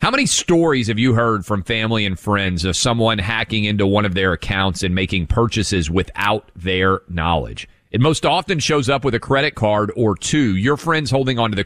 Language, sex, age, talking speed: English, male, 40-59, 205 wpm